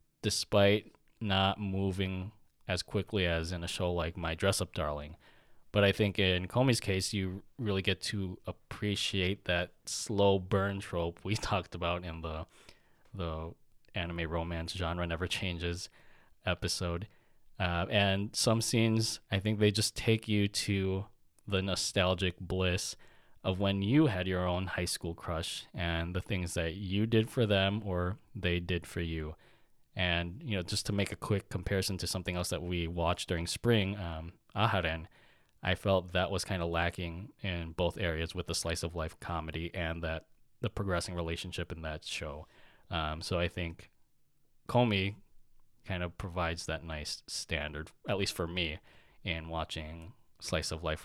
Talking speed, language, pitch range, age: 160 wpm, English, 85-100 Hz, 20-39